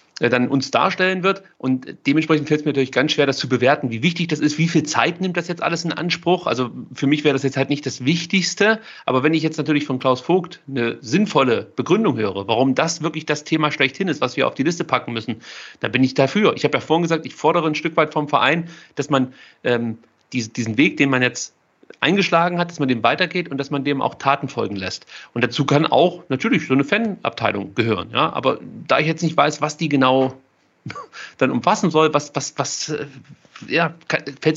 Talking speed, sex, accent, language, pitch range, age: 225 wpm, male, German, German, 130-165 Hz, 40-59